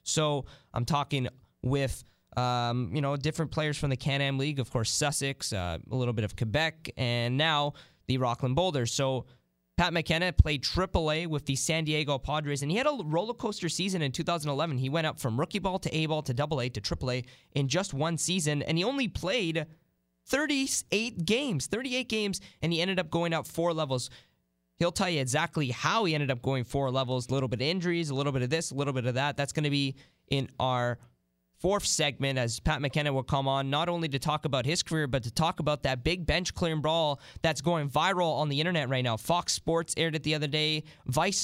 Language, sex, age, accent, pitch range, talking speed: English, male, 20-39, American, 130-165 Hz, 225 wpm